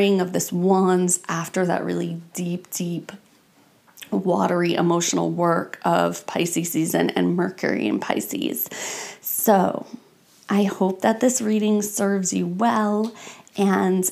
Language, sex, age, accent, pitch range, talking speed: English, female, 30-49, American, 180-200 Hz, 120 wpm